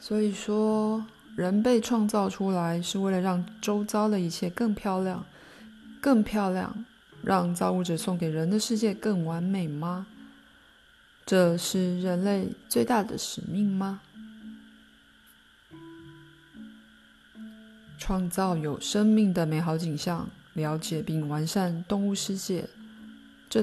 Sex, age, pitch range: female, 20-39, 165-220 Hz